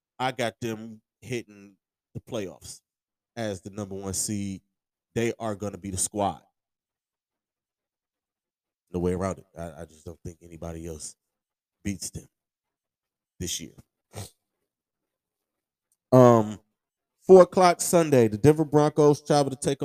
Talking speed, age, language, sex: 130 wpm, 20-39, English, male